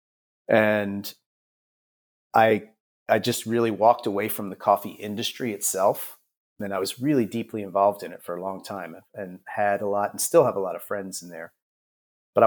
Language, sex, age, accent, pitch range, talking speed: English, male, 30-49, American, 95-110 Hz, 185 wpm